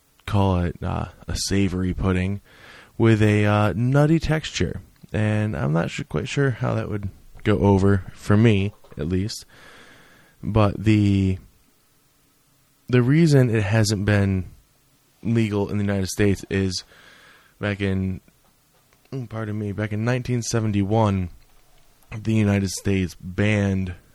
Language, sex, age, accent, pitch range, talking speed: English, male, 20-39, American, 95-110 Hz, 120 wpm